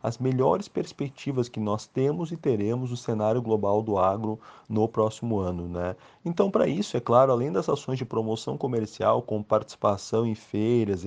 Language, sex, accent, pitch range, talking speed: Portuguese, male, Brazilian, 105-125 Hz, 175 wpm